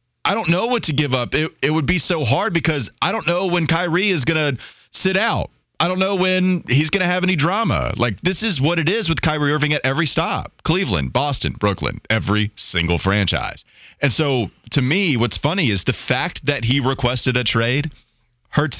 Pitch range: 110-170 Hz